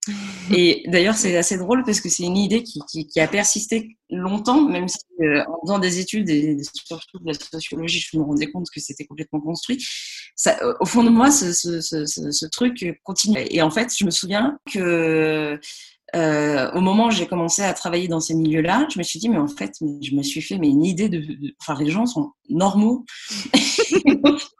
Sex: female